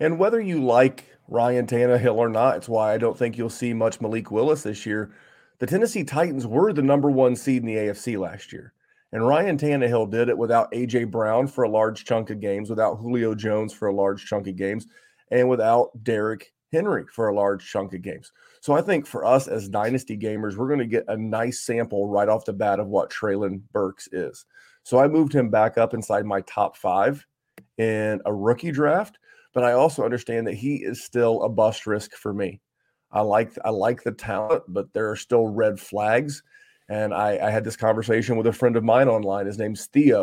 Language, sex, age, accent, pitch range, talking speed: English, male, 30-49, American, 105-125 Hz, 215 wpm